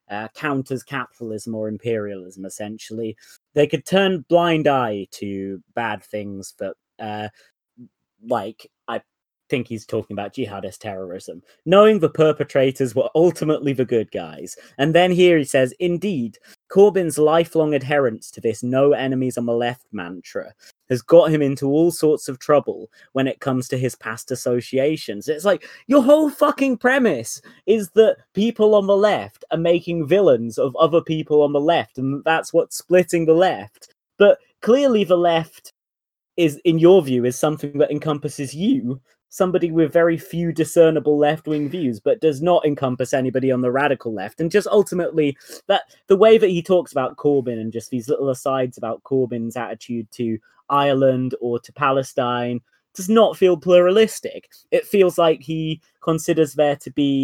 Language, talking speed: English, 165 wpm